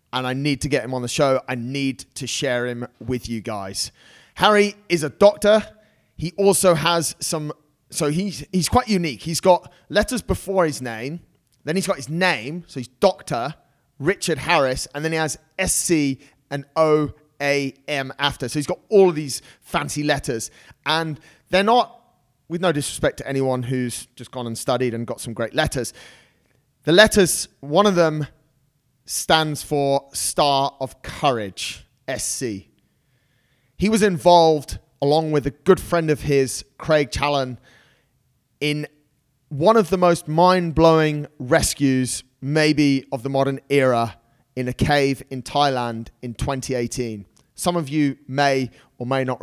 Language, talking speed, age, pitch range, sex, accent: English, 155 wpm, 30-49, 130-165 Hz, male, British